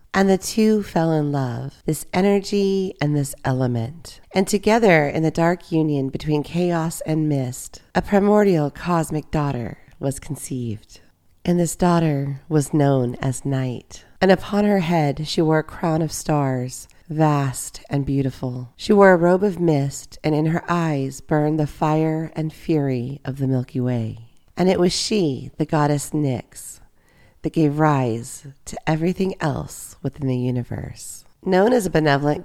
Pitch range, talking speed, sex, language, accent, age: 130-165 Hz, 160 wpm, female, English, American, 40-59